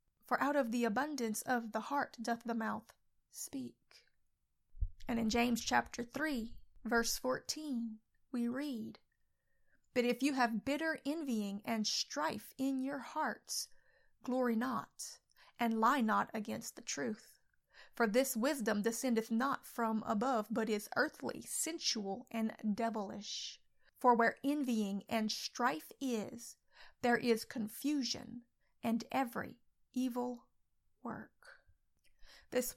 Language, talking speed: English, 125 wpm